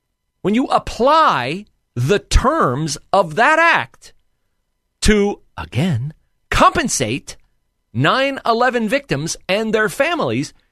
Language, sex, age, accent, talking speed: English, male, 40-59, American, 90 wpm